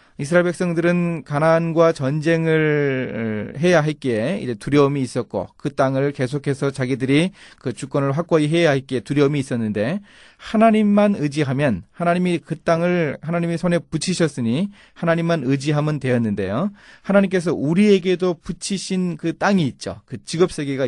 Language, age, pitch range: Korean, 30-49, 120-170 Hz